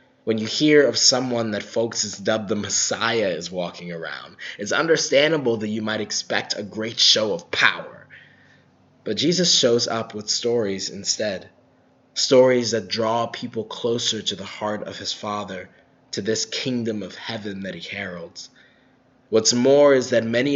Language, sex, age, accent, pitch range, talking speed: English, male, 20-39, American, 105-130 Hz, 165 wpm